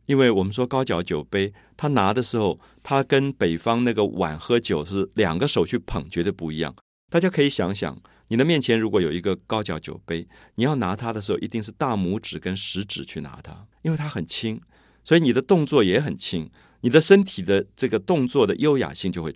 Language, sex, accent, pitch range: Chinese, male, native, 95-140 Hz